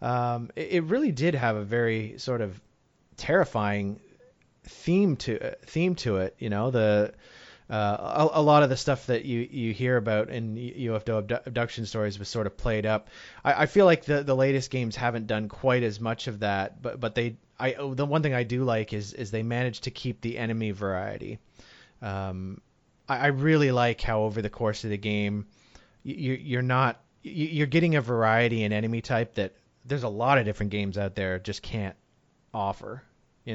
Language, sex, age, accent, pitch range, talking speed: English, male, 30-49, American, 105-130 Hz, 195 wpm